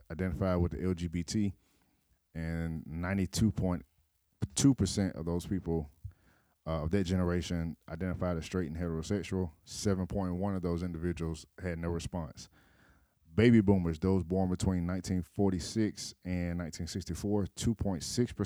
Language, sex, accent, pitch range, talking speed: English, male, American, 85-100 Hz, 105 wpm